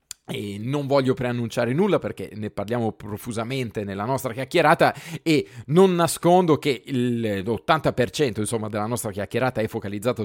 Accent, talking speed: native, 130 wpm